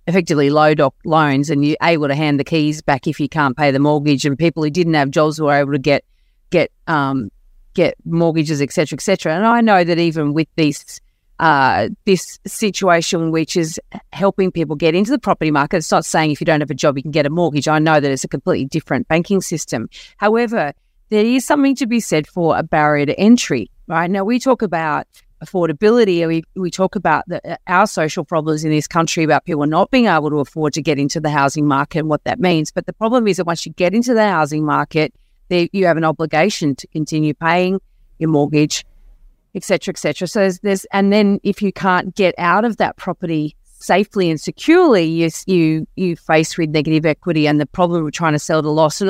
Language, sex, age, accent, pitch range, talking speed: English, female, 40-59, Australian, 150-185 Hz, 220 wpm